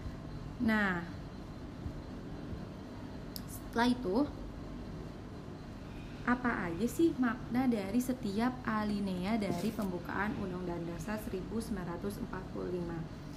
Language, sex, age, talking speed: Indonesian, female, 20-39, 70 wpm